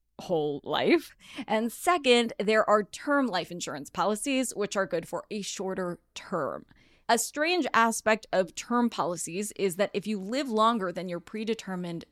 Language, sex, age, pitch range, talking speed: English, female, 10-29, 185-250 Hz, 160 wpm